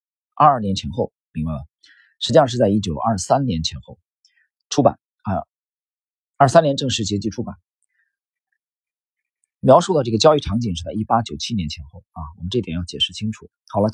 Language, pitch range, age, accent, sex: Chinese, 90-150 Hz, 40-59, native, male